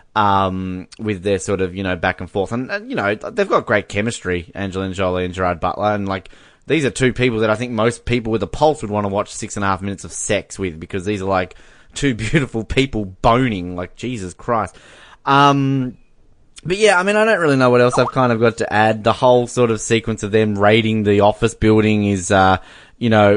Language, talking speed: English, 235 wpm